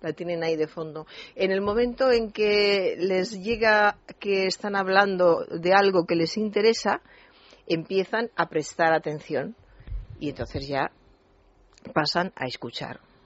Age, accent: 40-59, Spanish